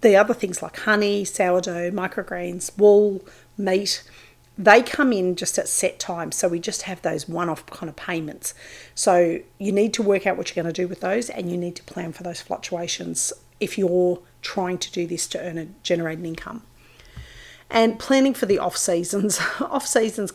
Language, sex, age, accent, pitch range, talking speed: English, female, 40-59, Australian, 175-200 Hz, 190 wpm